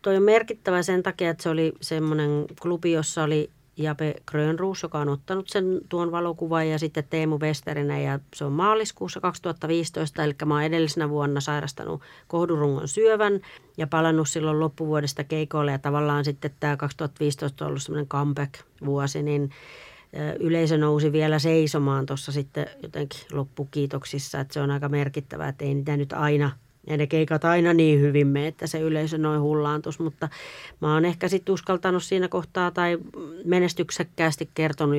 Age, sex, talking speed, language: 40-59, female, 155 wpm, Finnish